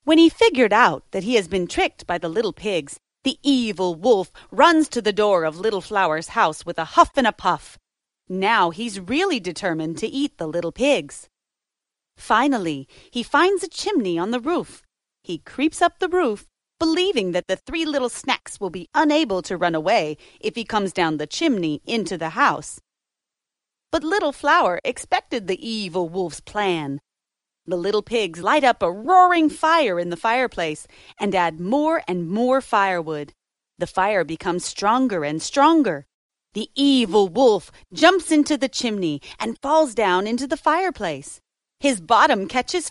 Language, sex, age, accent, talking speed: English, female, 30-49, American, 170 wpm